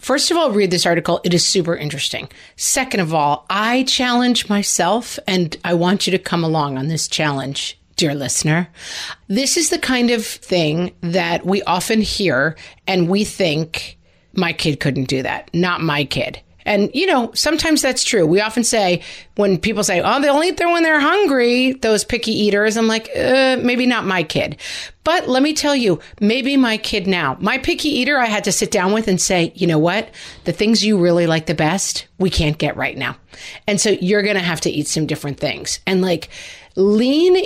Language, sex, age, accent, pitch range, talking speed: English, female, 40-59, American, 170-245 Hz, 205 wpm